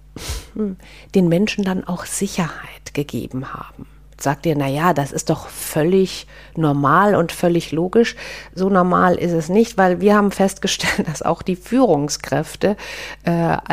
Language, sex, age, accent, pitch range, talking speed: German, female, 50-69, German, 155-190 Hz, 145 wpm